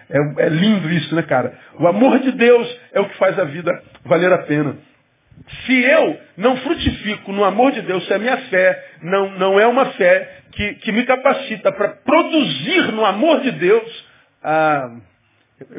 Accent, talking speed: Brazilian, 175 wpm